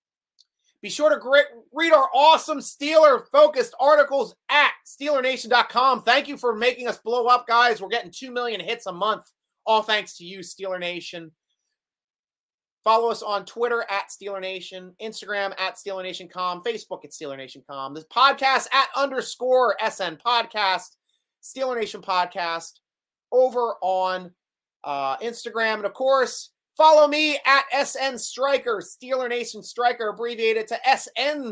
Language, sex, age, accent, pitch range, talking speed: English, male, 30-49, American, 190-280 Hz, 135 wpm